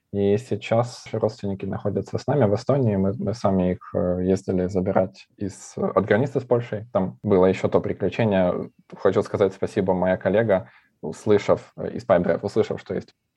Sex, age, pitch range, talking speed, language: male, 20-39, 95-110 Hz, 155 wpm, Russian